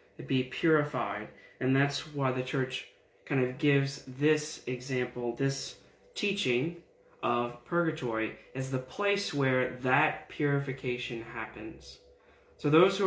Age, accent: 20-39, American